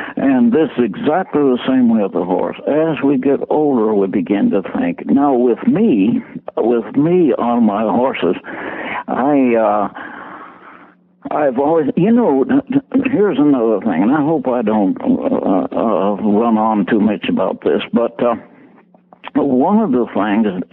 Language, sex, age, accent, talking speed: English, male, 60-79, American, 155 wpm